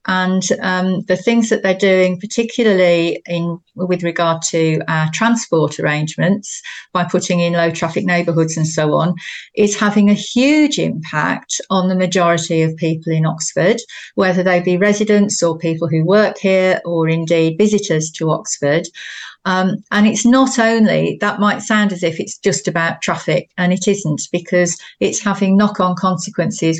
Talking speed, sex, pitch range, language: 160 wpm, female, 165-195 Hz, English